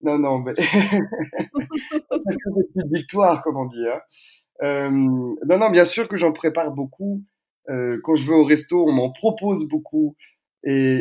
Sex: male